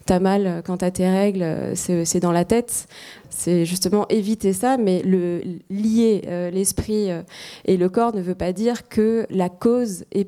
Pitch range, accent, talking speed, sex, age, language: 175-200 Hz, French, 180 wpm, female, 20-39, French